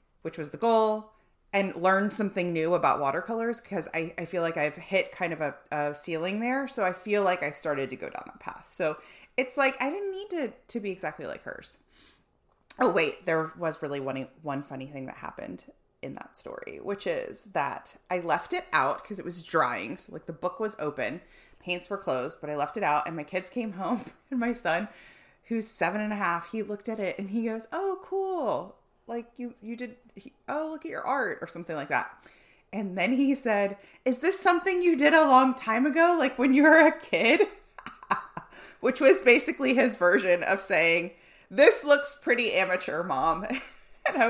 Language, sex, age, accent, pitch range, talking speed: English, female, 30-49, American, 180-290 Hz, 205 wpm